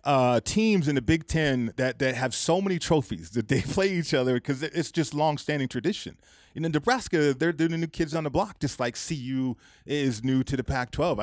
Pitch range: 120-150 Hz